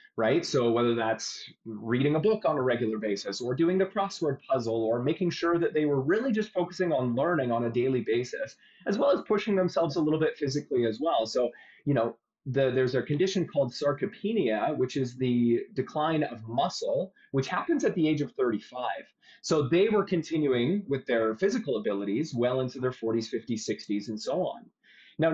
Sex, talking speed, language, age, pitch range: male, 195 wpm, English, 30-49, 120-165 Hz